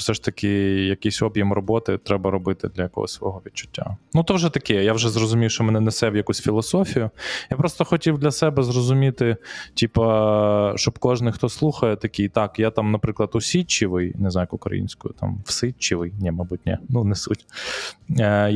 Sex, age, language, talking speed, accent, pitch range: male, 20-39, Ukrainian, 175 wpm, native, 95-120 Hz